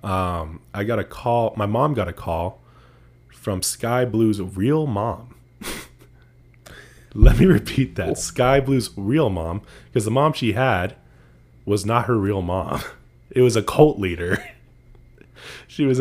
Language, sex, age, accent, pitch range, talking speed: English, male, 20-39, American, 90-115 Hz, 150 wpm